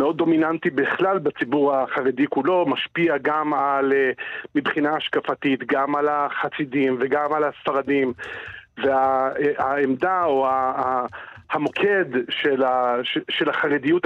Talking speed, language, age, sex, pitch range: 95 wpm, Hebrew, 40-59, male, 145-185 Hz